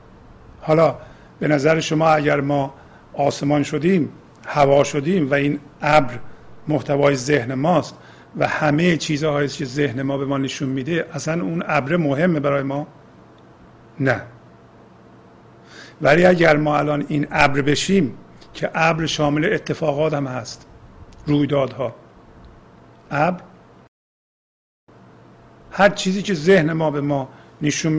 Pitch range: 140-165 Hz